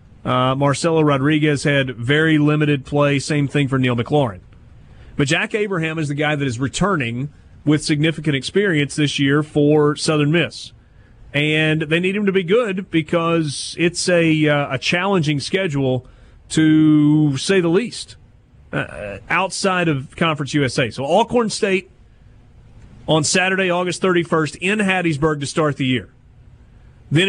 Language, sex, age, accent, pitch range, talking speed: English, male, 30-49, American, 130-175 Hz, 145 wpm